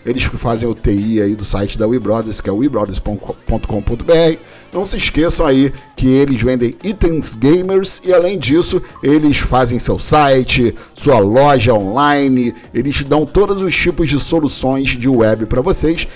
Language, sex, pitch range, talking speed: Portuguese, male, 120-155 Hz, 165 wpm